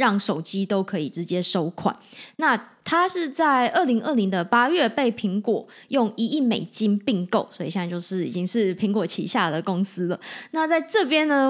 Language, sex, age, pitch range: Chinese, female, 20-39, 190-245 Hz